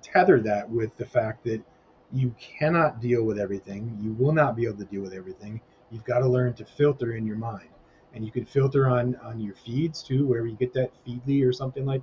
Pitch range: 115-140 Hz